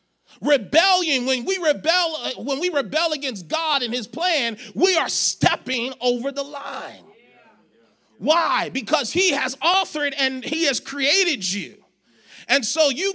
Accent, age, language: American, 30-49, English